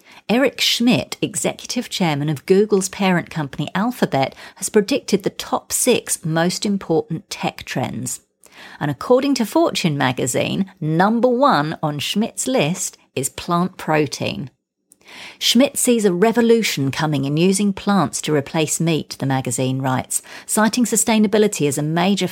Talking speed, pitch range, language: 135 wpm, 150-210 Hz, English